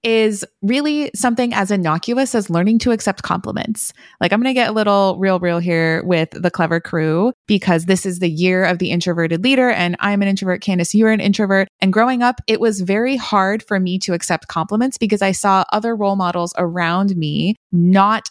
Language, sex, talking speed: English, female, 205 wpm